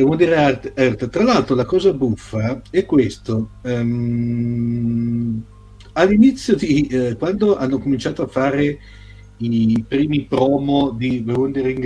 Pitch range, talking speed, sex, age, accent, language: 115-140 Hz, 110 wpm, male, 50-69, native, Italian